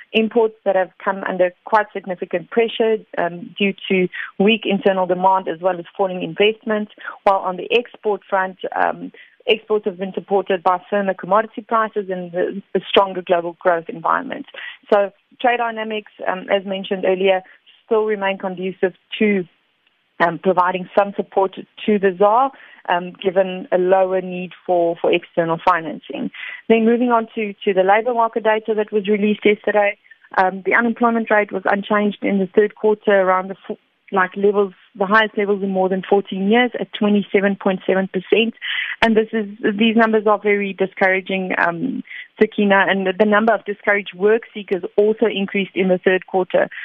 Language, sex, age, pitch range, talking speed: English, female, 30-49, 190-215 Hz, 160 wpm